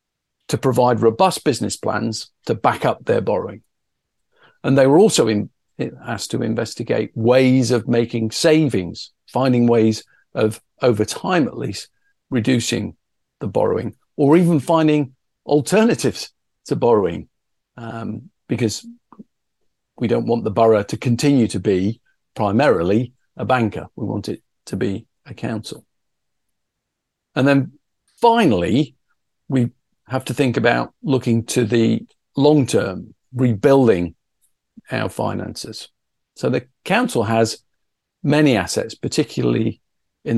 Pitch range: 115-140 Hz